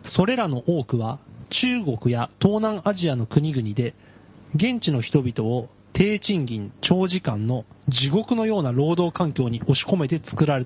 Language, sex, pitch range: Japanese, male, 125-190 Hz